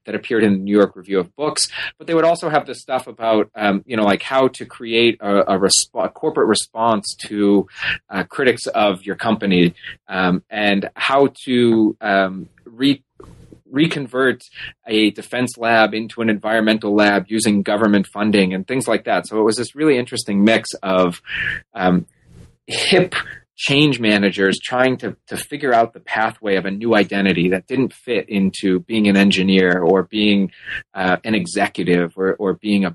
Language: English